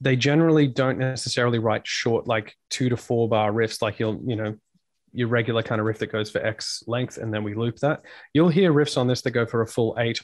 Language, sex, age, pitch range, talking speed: English, male, 20-39, 115-145 Hz, 245 wpm